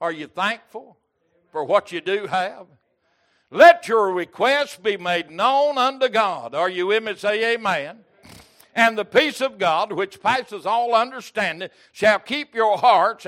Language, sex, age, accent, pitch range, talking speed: English, male, 60-79, American, 200-270 Hz, 160 wpm